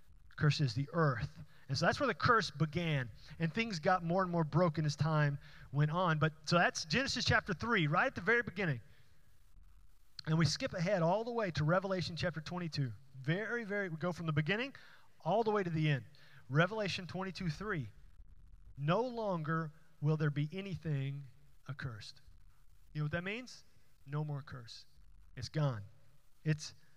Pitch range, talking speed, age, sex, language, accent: 140-195 Hz, 175 wpm, 30-49, male, English, American